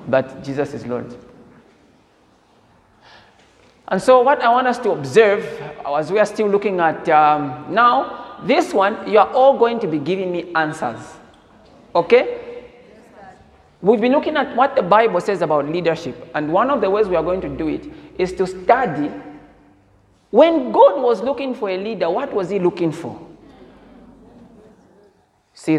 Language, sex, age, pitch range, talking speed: English, male, 50-69, 185-260 Hz, 160 wpm